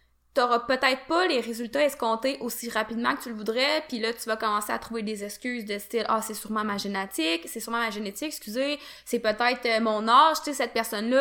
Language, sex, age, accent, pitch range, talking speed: French, female, 20-39, Canadian, 220-265 Hz, 225 wpm